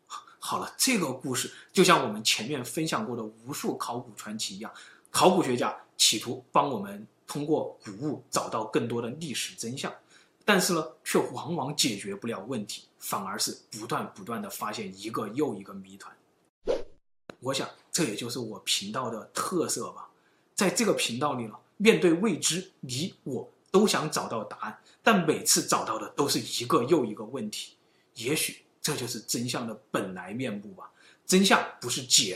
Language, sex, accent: Chinese, male, native